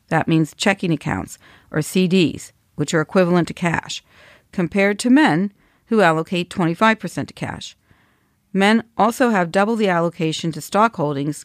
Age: 40-59